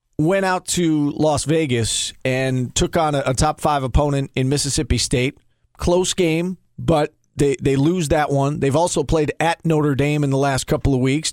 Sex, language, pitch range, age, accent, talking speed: male, English, 140-175 Hz, 40-59, American, 190 wpm